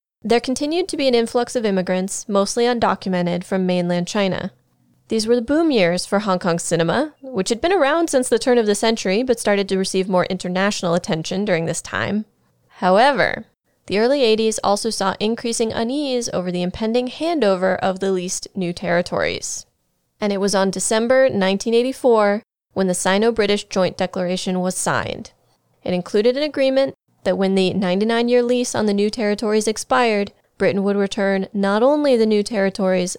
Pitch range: 190-250 Hz